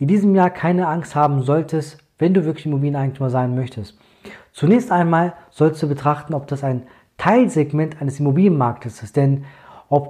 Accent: German